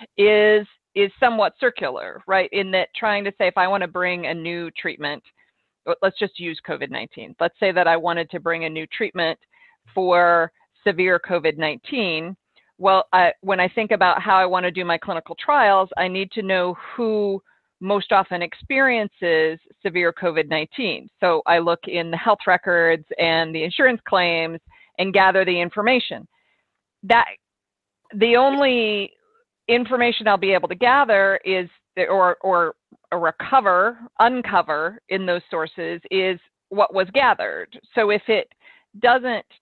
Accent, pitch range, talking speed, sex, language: American, 170-210 Hz, 150 wpm, female, English